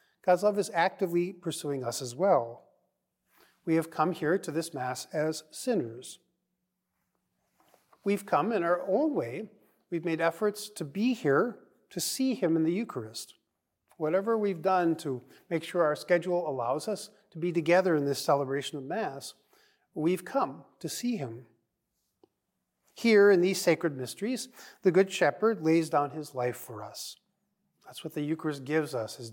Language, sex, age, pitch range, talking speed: English, male, 40-59, 135-185 Hz, 160 wpm